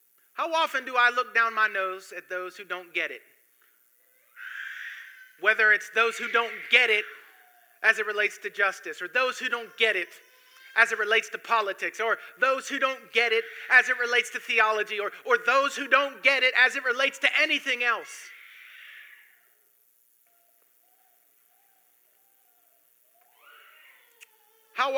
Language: English